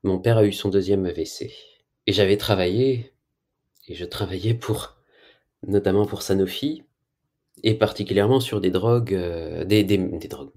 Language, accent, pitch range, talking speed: French, French, 100-130 Hz, 155 wpm